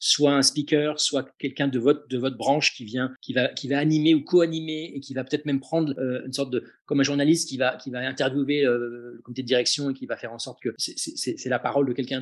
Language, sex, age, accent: French, male, 40-59, French